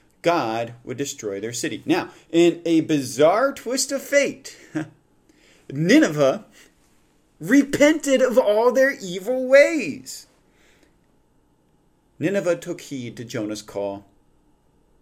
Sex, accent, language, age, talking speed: male, American, English, 40-59, 100 wpm